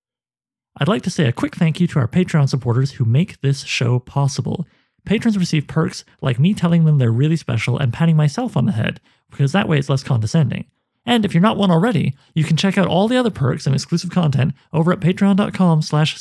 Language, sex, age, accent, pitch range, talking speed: English, male, 30-49, American, 125-170 Hz, 220 wpm